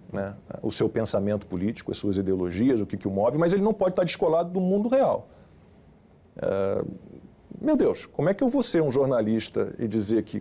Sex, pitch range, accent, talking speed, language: male, 105-125 Hz, Brazilian, 210 wpm, Portuguese